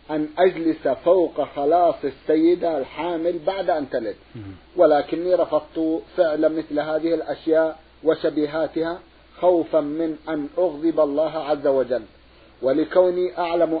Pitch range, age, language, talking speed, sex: 150-175 Hz, 50-69, Arabic, 110 wpm, male